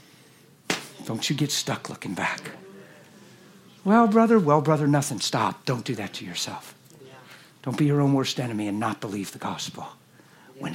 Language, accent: English, American